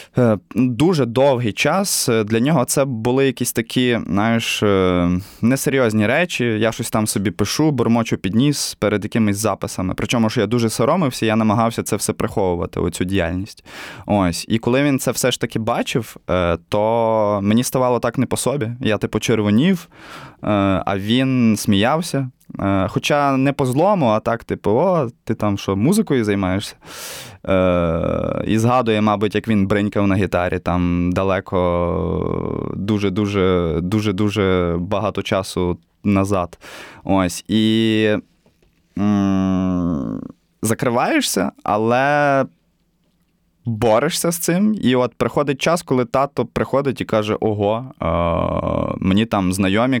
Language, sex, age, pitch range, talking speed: Ukrainian, male, 20-39, 95-125 Hz, 125 wpm